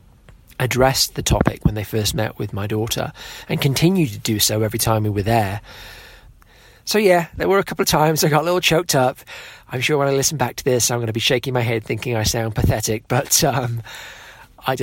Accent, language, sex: British, English, male